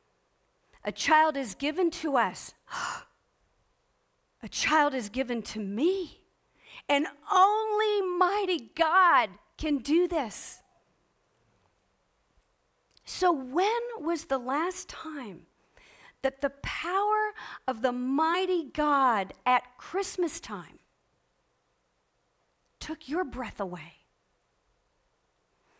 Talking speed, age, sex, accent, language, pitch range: 90 wpm, 50-69, female, American, English, 205-315 Hz